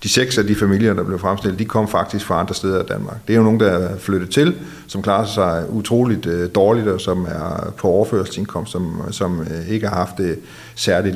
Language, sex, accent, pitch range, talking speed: Danish, male, native, 95-105 Hz, 220 wpm